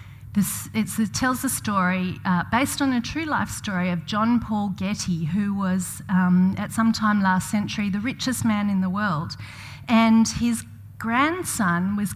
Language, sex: English, female